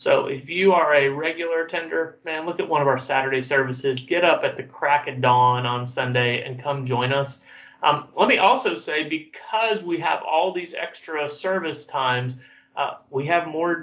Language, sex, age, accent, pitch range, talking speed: English, male, 30-49, American, 135-155 Hz, 195 wpm